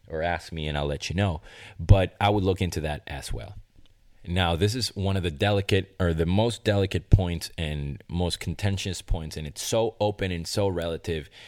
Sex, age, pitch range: male, 30-49, 85-105 Hz